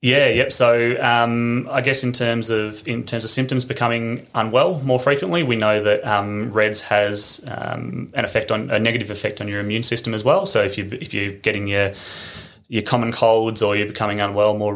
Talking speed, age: 205 wpm, 20-39